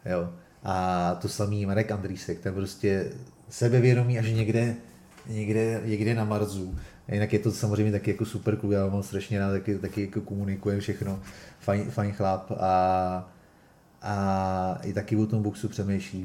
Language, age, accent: Czech, 30-49, native